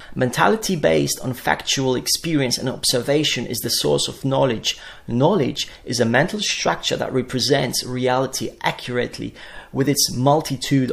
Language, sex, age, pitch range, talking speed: English, male, 30-49, 120-145 Hz, 130 wpm